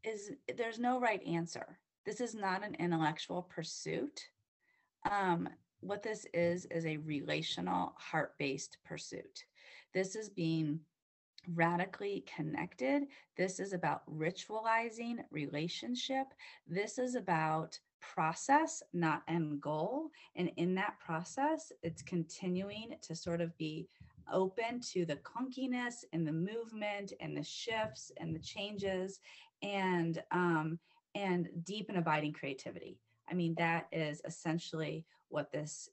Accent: American